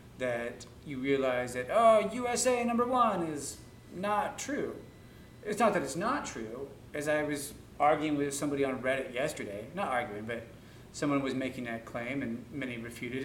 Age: 30-49